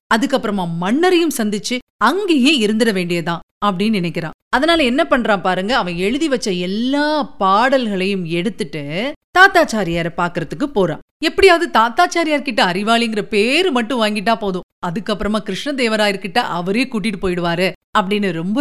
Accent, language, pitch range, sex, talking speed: native, Tamil, 190-275 Hz, female, 115 wpm